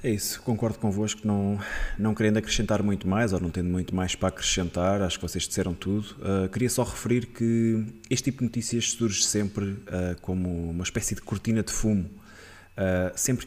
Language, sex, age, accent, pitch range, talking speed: Portuguese, male, 20-39, Portuguese, 95-115 Hz, 180 wpm